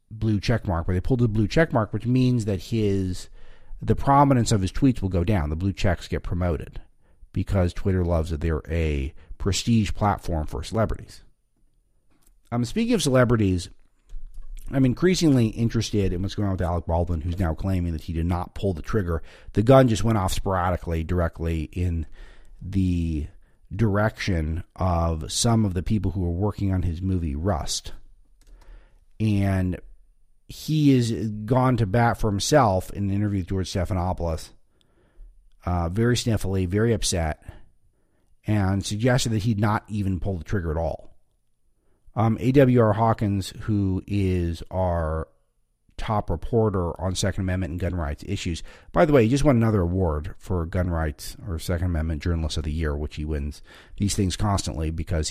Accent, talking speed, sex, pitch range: American, 170 wpm, male, 85-110 Hz